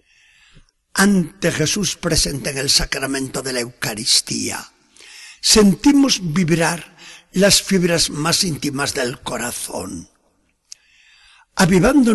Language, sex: Spanish, male